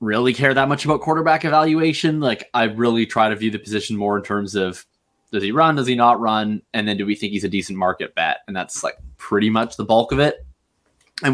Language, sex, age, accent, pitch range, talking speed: English, male, 20-39, American, 100-130 Hz, 245 wpm